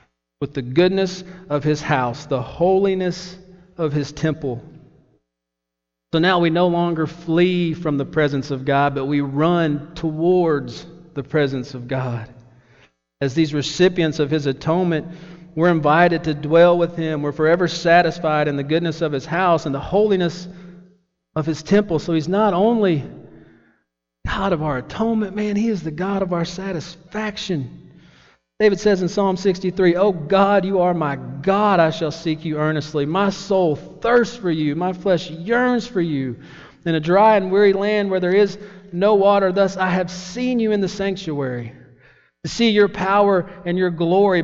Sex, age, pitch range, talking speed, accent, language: male, 40-59, 150-190 Hz, 170 wpm, American, English